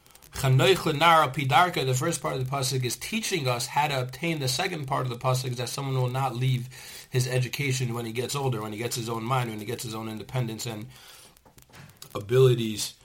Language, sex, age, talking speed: English, male, 40-59, 200 wpm